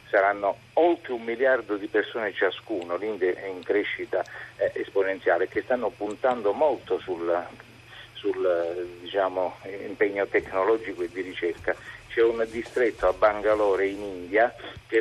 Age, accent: 50-69, native